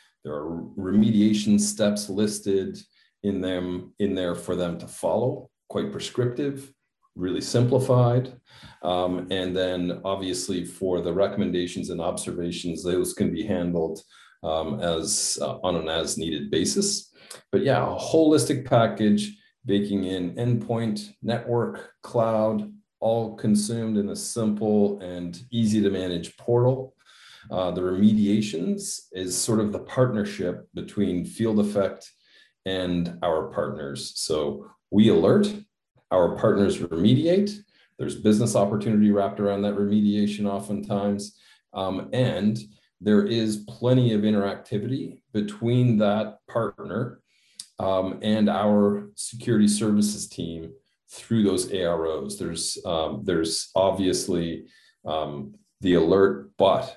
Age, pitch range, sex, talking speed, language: 40-59, 90-110 Hz, male, 120 wpm, English